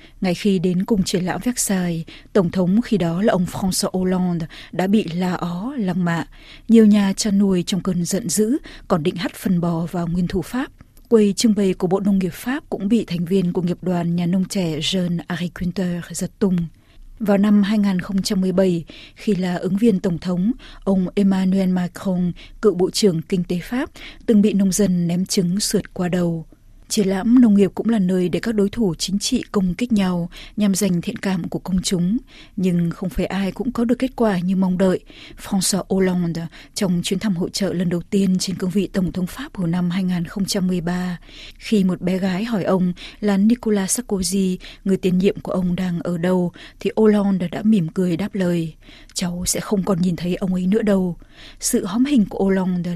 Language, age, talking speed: Vietnamese, 20-39, 205 wpm